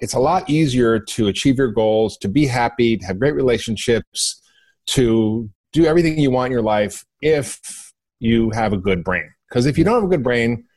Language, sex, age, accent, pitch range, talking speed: English, male, 40-59, American, 105-135 Hz, 205 wpm